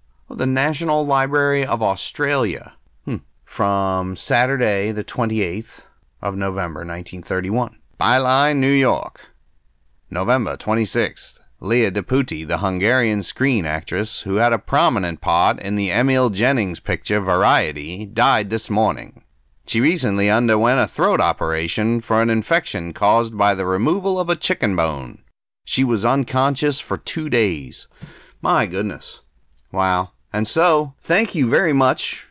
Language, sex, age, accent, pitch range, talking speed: English, male, 30-49, American, 95-125 Hz, 130 wpm